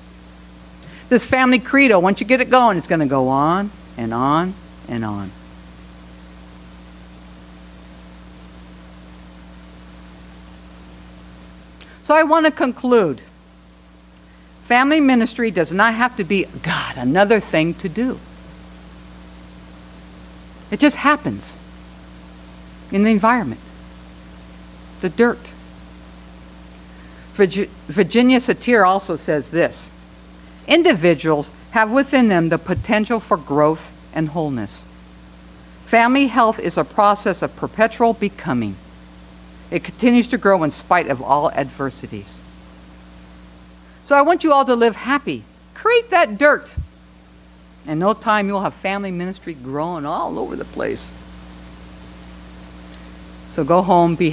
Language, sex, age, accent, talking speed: English, female, 60-79, American, 110 wpm